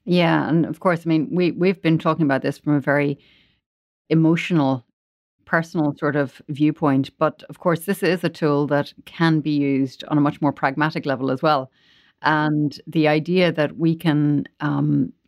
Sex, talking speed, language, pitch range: female, 175 wpm, English, 140-160 Hz